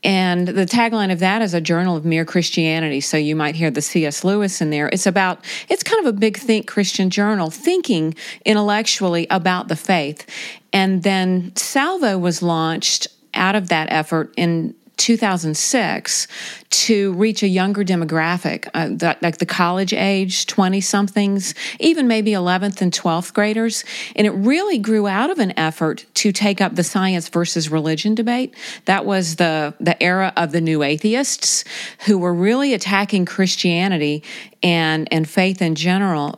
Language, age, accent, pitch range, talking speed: English, 40-59, American, 165-210 Hz, 160 wpm